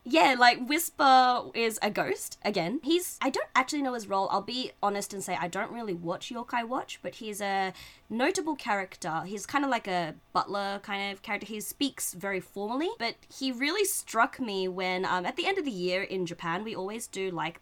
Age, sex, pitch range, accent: 20-39, female, 170-225 Hz, Australian